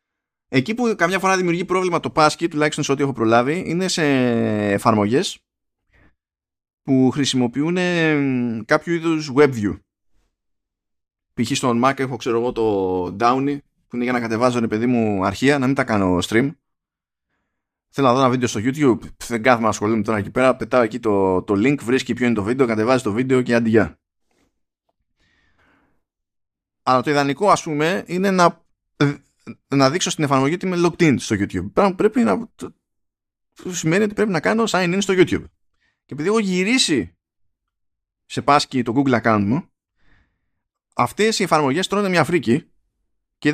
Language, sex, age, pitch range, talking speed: Greek, male, 20-39, 110-165 Hz, 165 wpm